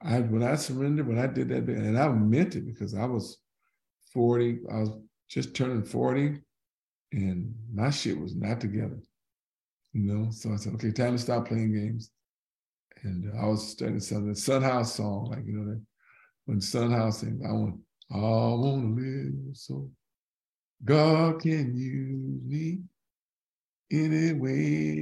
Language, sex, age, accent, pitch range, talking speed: English, male, 50-69, American, 105-135 Hz, 155 wpm